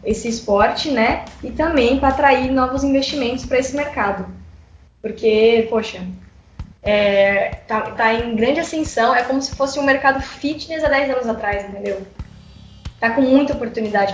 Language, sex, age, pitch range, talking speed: Portuguese, female, 10-29, 220-270 Hz, 155 wpm